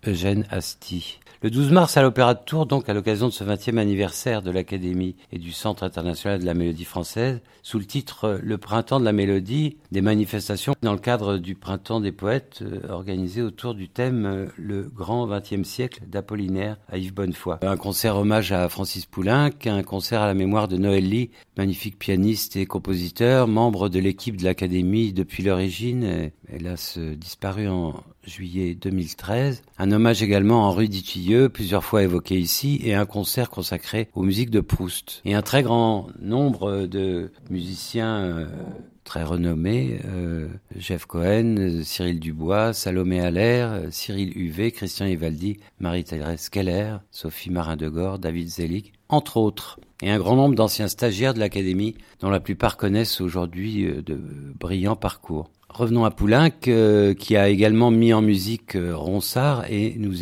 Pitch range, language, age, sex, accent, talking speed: 95-115 Hz, French, 50-69, male, French, 165 wpm